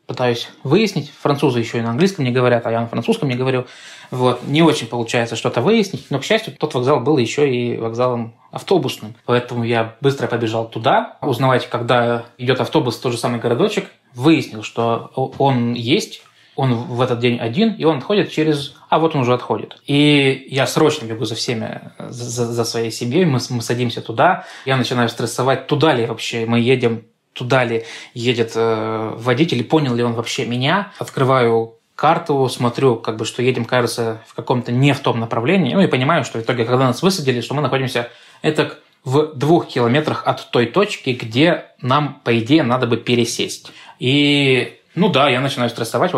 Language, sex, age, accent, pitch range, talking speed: Russian, male, 20-39, native, 120-145 Hz, 180 wpm